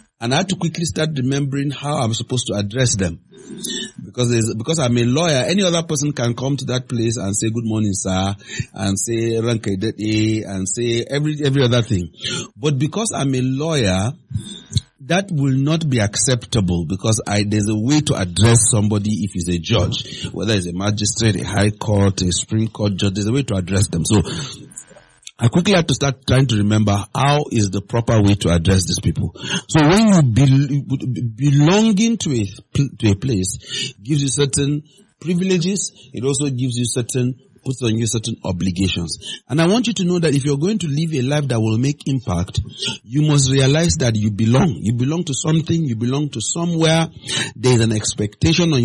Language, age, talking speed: English, 40-59, 195 wpm